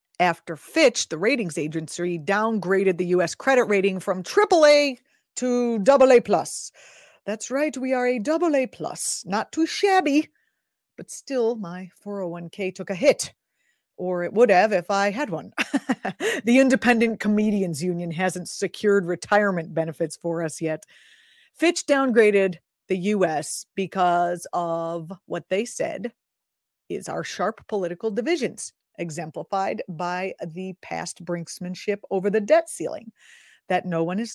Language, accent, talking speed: English, American, 135 wpm